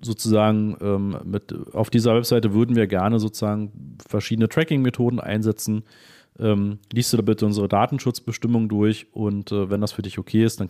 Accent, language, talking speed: German, German, 165 wpm